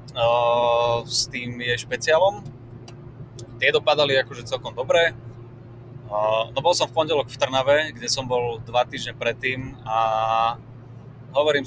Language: Slovak